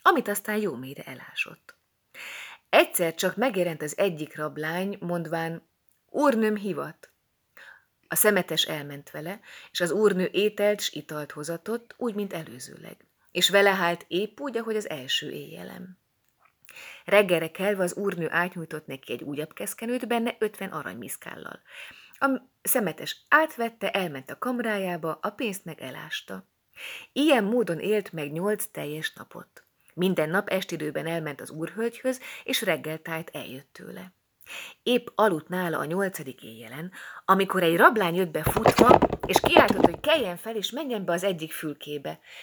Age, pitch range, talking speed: 30-49, 165-220 Hz, 140 wpm